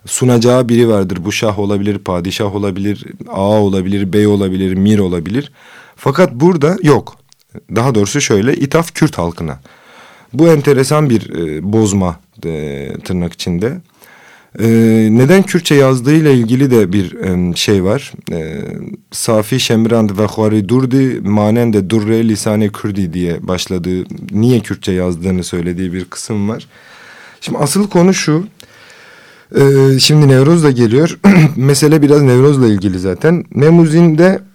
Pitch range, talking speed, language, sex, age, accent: 100-145 Hz, 125 wpm, Turkish, male, 40-59, native